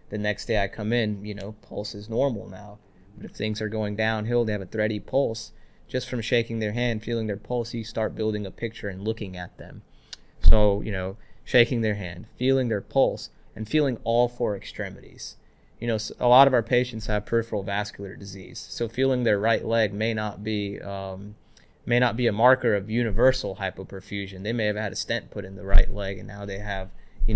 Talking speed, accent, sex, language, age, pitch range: 215 wpm, American, male, English, 20-39, 100-120 Hz